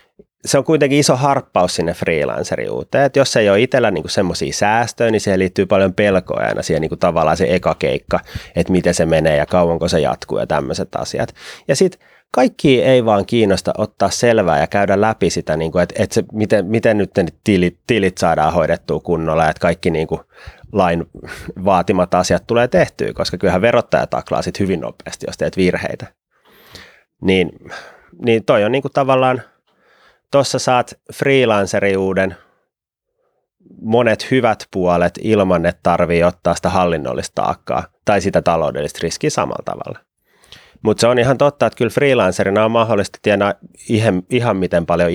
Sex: male